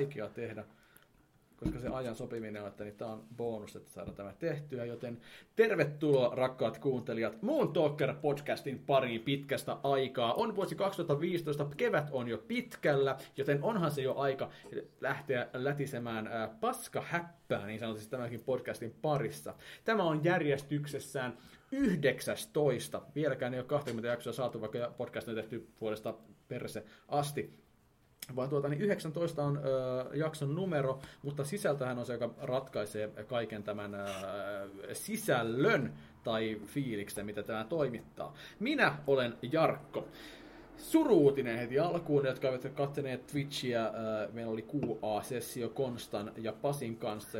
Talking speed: 130 wpm